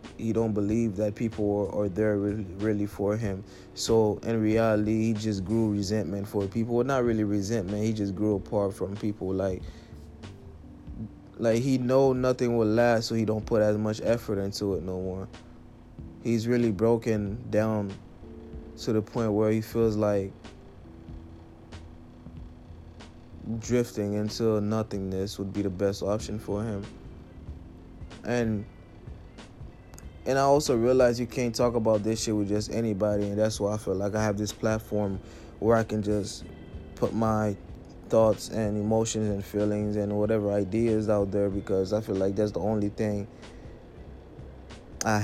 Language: English